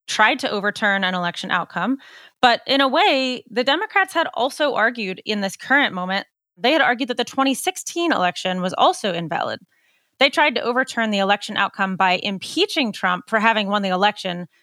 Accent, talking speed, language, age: American, 180 wpm, English, 20-39